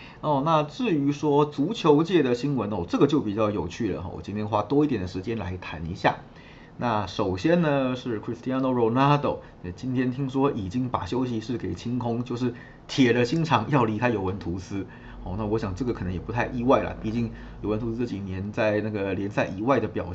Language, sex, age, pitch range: Chinese, male, 30-49, 95-125 Hz